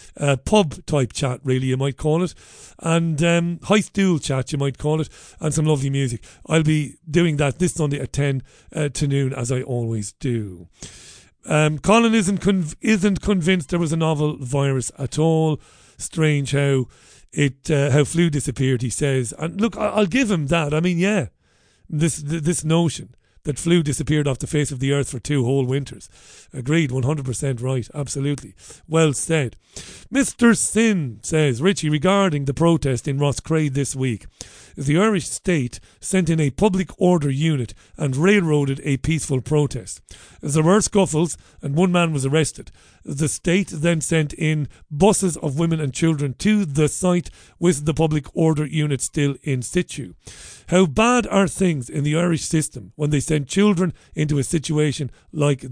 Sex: male